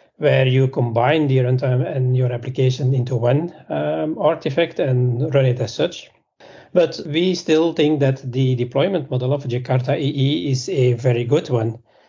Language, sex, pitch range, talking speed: English, male, 125-150 Hz, 165 wpm